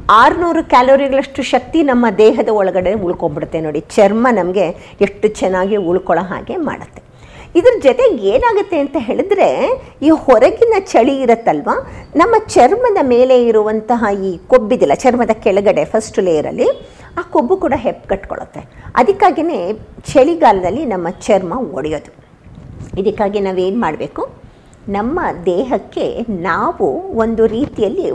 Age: 50-69